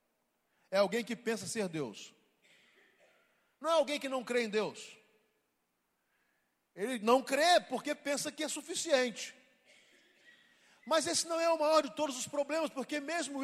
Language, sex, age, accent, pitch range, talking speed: Portuguese, male, 40-59, Brazilian, 235-295 Hz, 150 wpm